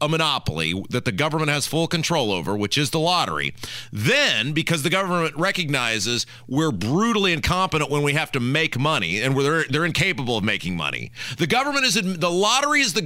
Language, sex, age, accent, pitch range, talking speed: English, male, 40-59, American, 125-170 Hz, 190 wpm